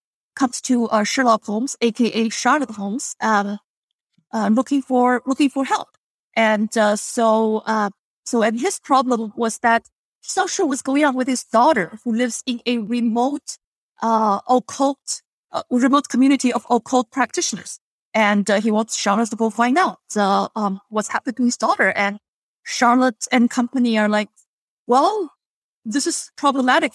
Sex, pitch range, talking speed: female, 215-255 Hz, 165 wpm